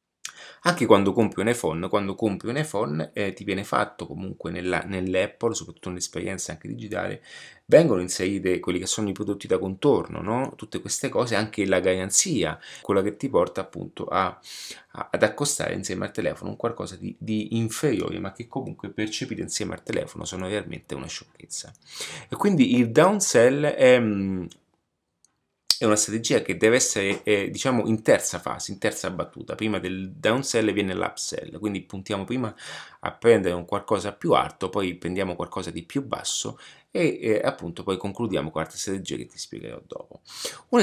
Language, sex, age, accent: Italian, male, 30-49, native